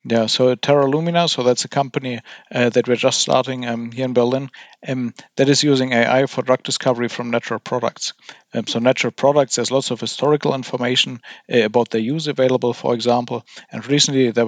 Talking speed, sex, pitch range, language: 195 wpm, male, 115-135 Hz, English